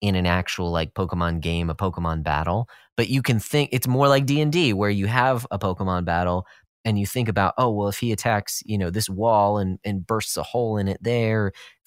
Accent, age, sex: American, 30-49, male